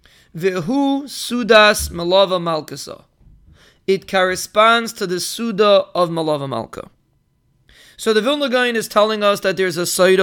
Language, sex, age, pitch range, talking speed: English, male, 30-49, 170-220 Hz, 130 wpm